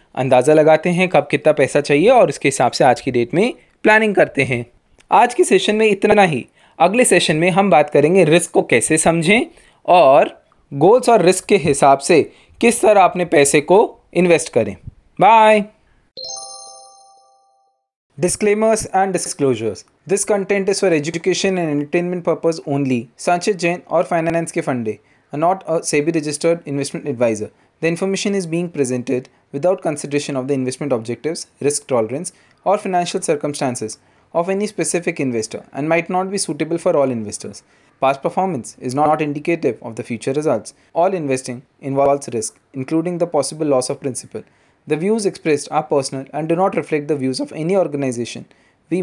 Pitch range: 135-180 Hz